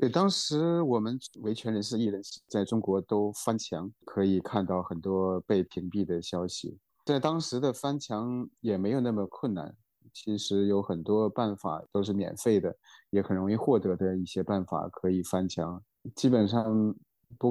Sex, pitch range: male, 95-115 Hz